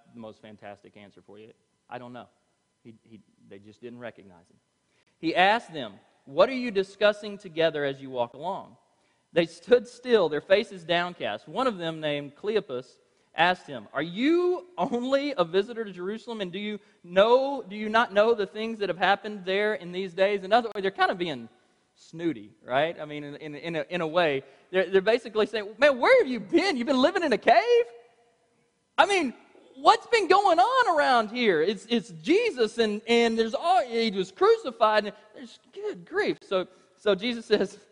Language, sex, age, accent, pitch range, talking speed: English, male, 30-49, American, 165-235 Hz, 195 wpm